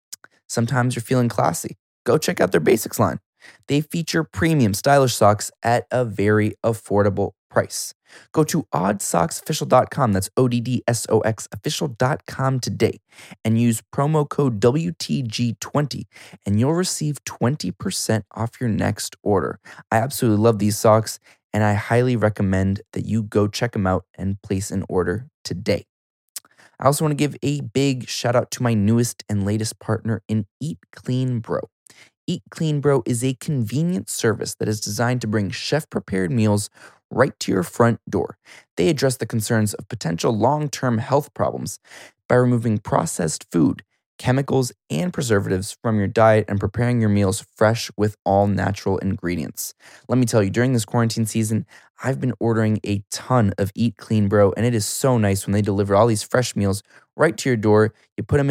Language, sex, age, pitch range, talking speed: English, male, 20-39, 105-125 Hz, 165 wpm